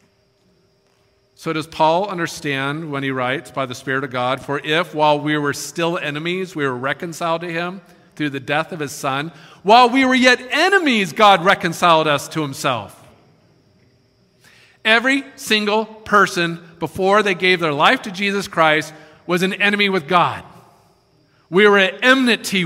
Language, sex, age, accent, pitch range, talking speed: English, male, 40-59, American, 140-195 Hz, 160 wpm